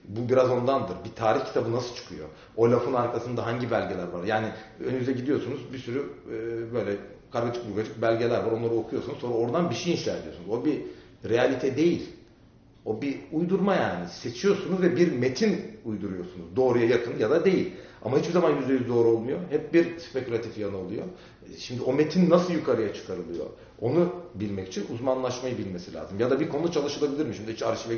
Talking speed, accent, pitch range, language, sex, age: 175 wpm, native, 110-135 Hz, Turkish, male, 40-59